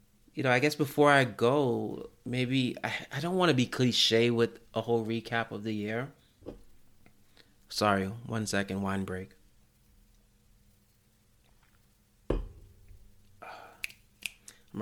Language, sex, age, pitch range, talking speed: English, male, 30-49, 100-115 Hz, 115 wpm